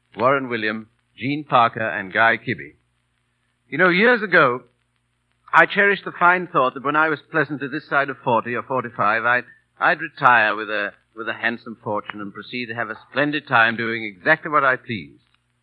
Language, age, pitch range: English, 50-69, 115-145 Hz